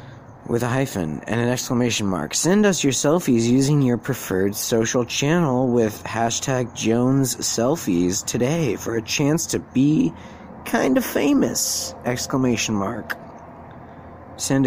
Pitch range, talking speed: 105-140 Hz, 130 wpm